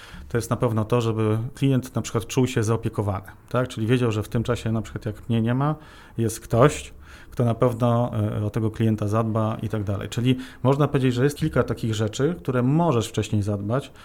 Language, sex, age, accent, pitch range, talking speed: Polish, male, 40-59, native, 110-125 Hz, 210 wpm